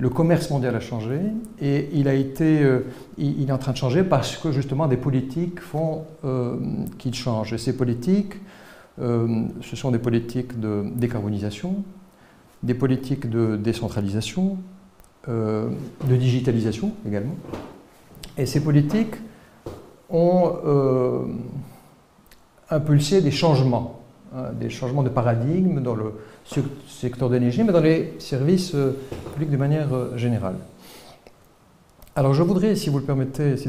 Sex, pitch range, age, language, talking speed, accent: male, 125-165 Hz, 50-69, French, 120 wpm, French